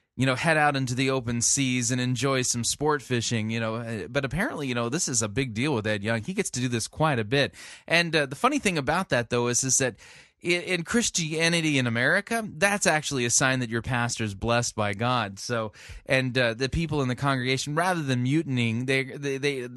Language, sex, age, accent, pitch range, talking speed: English, male, 20-39, American, 120-160 Hz, 230 wpm